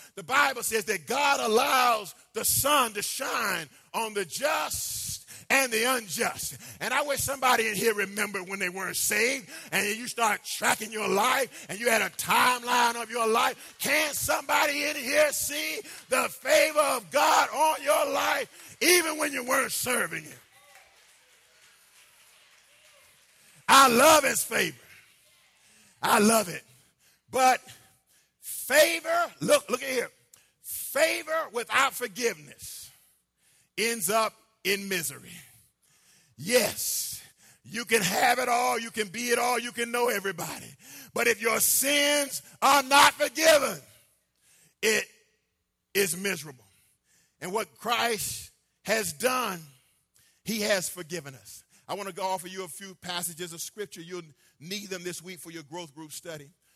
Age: 40-59